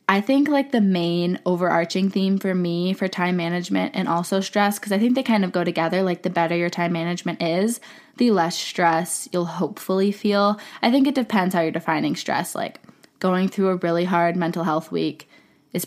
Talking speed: 205 wpm